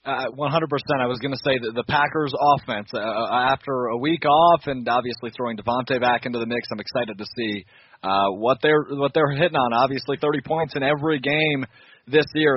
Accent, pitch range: American, 115-145 Hz